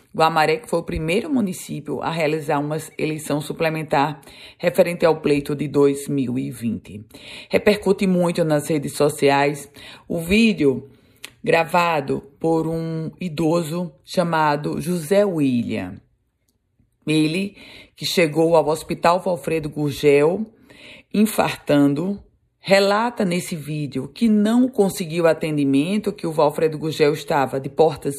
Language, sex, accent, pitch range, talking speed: Portuguese, female, Brazilian, 145-180 Hz, 110 wpm